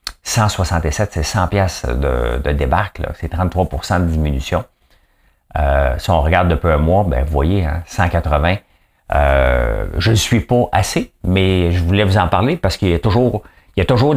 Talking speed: 200 wpm